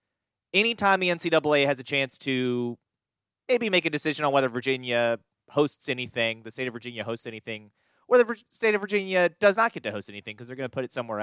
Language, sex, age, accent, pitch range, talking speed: English, male, 30-49, American, 115-180 Hz, 215 wpm